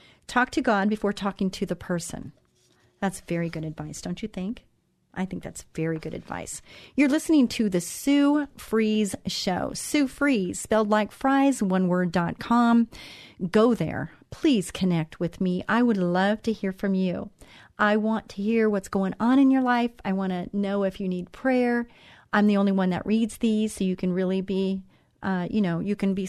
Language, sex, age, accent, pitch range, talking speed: English, female, 40-59, American, 175-220 Hz, 195 wpm